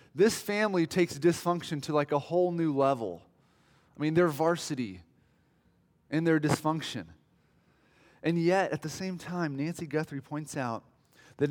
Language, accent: English, American